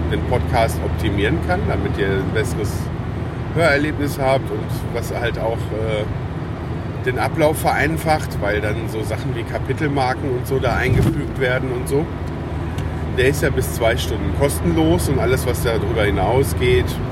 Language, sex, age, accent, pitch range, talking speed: German, male, 40-59, German, 85-125 Hz, 150 wpm